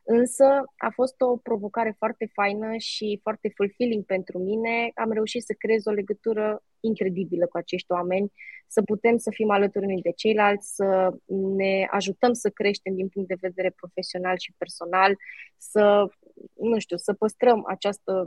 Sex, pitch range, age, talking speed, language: female, 185-215 Hz, 20-39, 160 wpm, Romanian